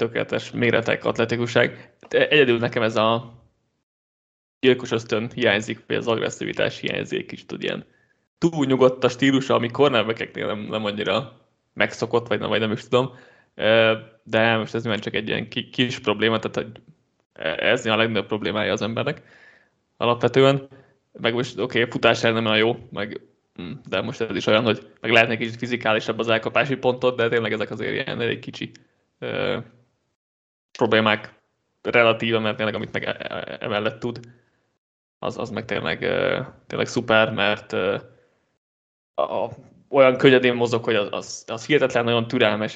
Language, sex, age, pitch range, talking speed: Hungarian, male, 20-39, 110-125 Hz, 150 wpm